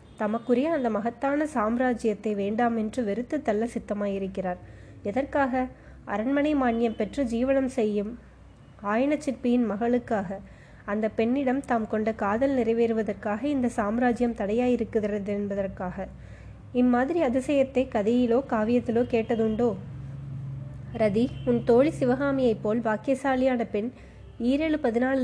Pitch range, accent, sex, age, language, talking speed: 215-255 Hz, native, female, 20-39, Tamil, 75 wpm